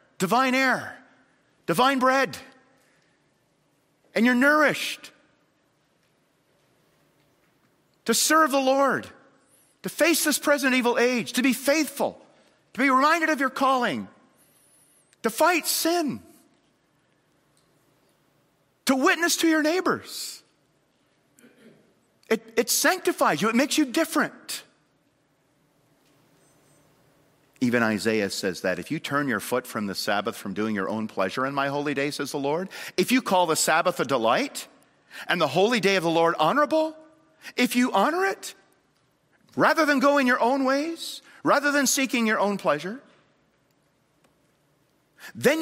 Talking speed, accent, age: 130 wpm, American, 40-59